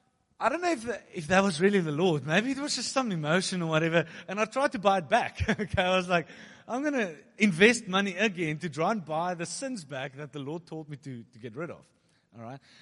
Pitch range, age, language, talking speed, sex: 125-210 Hz, 30-49, English, 260 wpm, male